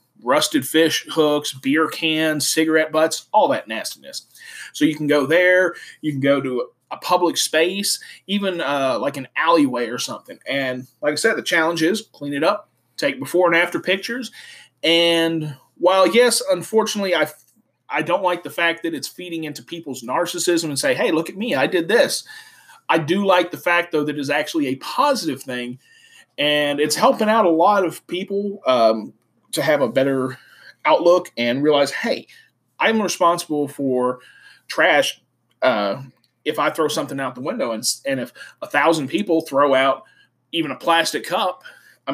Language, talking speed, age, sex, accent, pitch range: English, 175 wpm, 30-49, male, American, 140-180 Hz